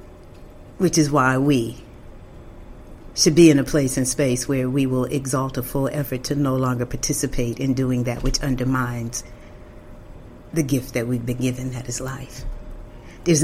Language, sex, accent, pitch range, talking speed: English, female, American, 120-165 Hz, 165 wpm